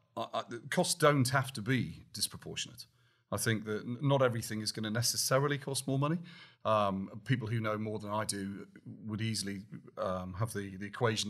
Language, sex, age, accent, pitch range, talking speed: English, male, 40-59, British, 105-125 Hz, 180 wpm